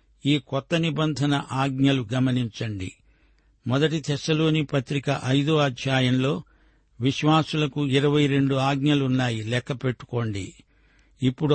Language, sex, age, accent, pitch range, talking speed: Telugu, male, 60-79, native, 130-155 Hz, 90 wpm